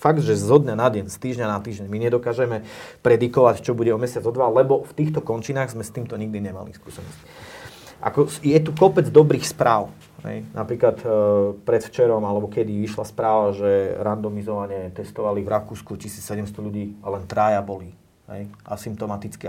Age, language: 30-49, Slovak